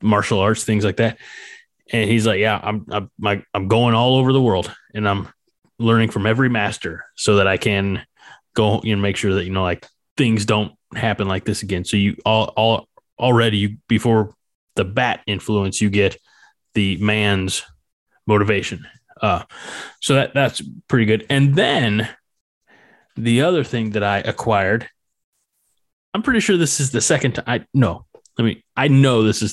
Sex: male